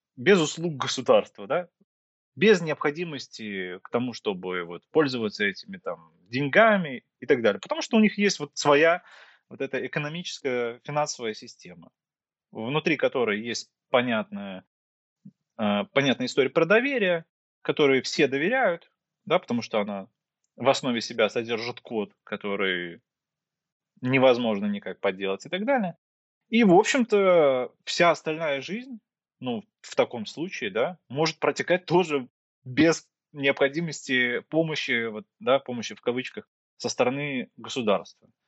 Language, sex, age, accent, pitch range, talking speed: Russian, male, 20-39, native, 110-165 Hz, 130 wpm